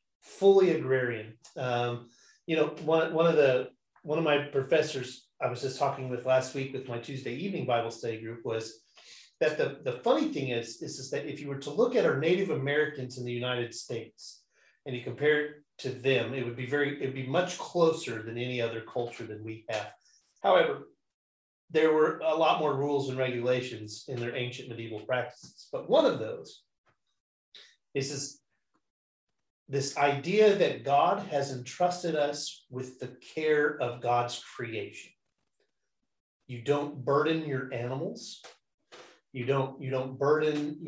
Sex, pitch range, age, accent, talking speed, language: male, 125-150 Hz, 30-49, American, 165 wpm, English